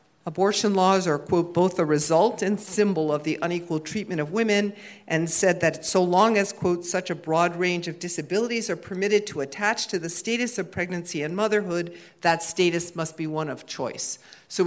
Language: English